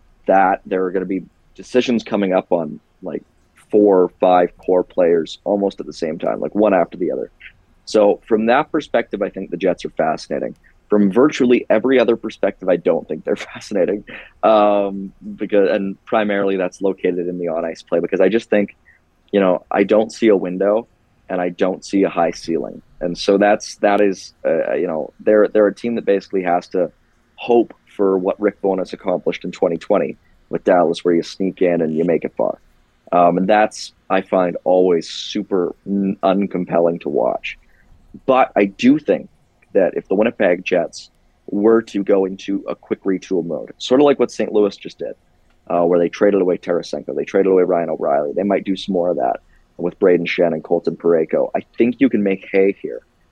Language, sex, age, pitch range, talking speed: English, male, 30-49, 90-105 Hz, 200 wpm